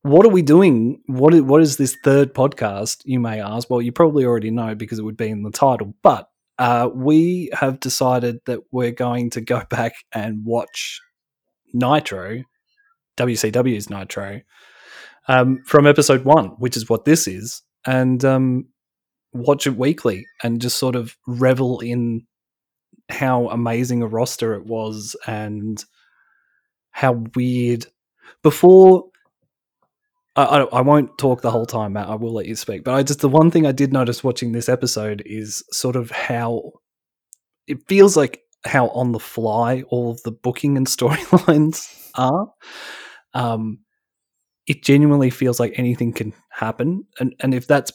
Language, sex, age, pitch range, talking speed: English, male, 30-49, 115-135 Hz, 160 wpm